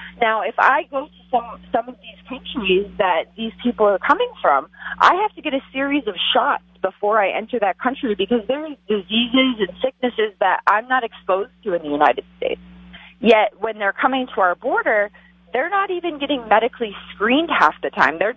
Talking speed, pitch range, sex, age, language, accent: 200 wpm, 185-255 Hz, female, 30-49, English, American